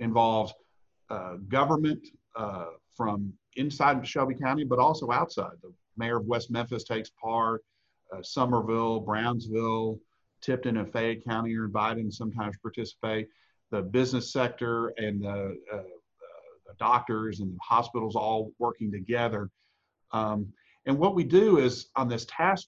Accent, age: American, 50-69